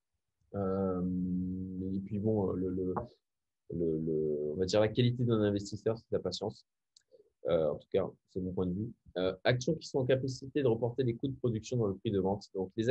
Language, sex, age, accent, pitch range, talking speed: French, male, 20-39, French, 105-140 Hz, 220 wpm